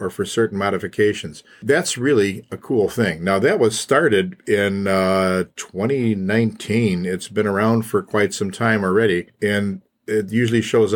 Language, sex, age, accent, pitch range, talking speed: English, male, 50-69, American, 95-110 Hz, 155 wpm